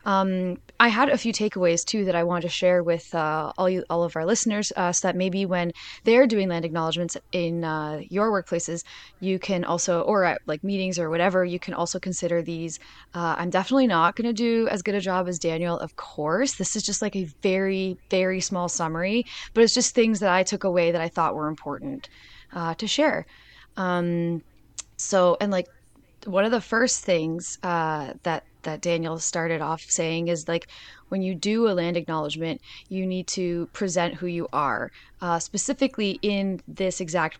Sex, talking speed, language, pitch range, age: female, 195 wpm, English, 165-195 Hz, 20-39